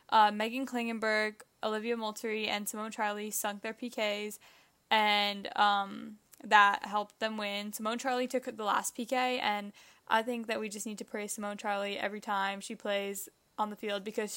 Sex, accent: female, American